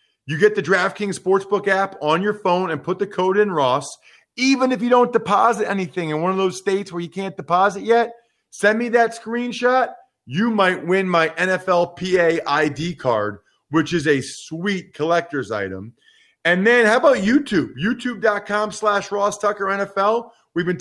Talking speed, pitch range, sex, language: 175 wpm, 175-220 Hz, male, English